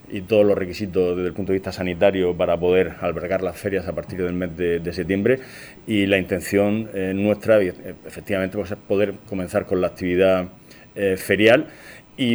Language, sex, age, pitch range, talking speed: Spanish, male, 30-49, 90-100 Hz, 180 wpm